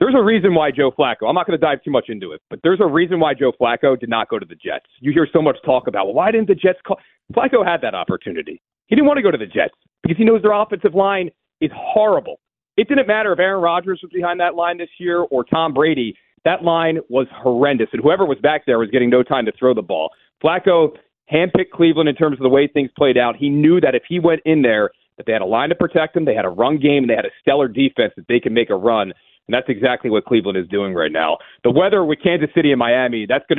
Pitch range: 120-175 Hz